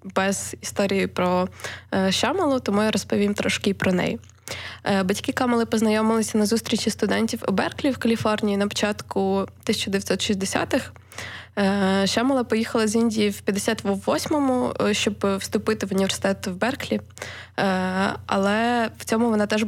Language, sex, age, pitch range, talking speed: Ukrainian, female, 20-39, 195-225 Hz, 135 wpm